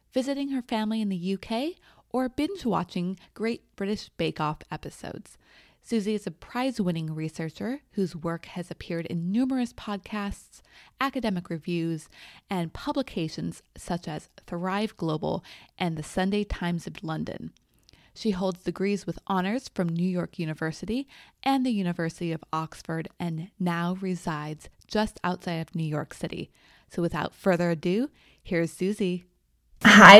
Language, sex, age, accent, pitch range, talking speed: English, female, 20-39, American, 175-235 Hz, 135 wpm